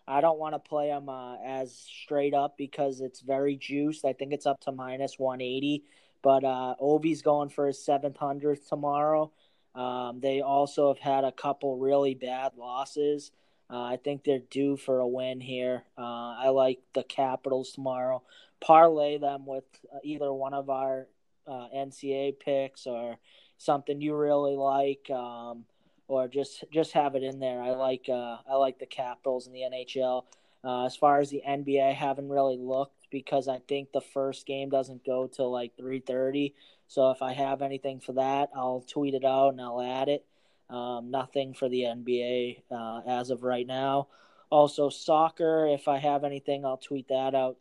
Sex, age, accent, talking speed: male, 20-39, American, 180 wpm